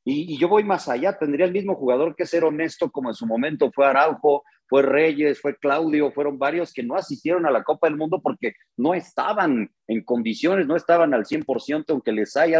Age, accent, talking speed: 40-59, Mexican, 220 wpm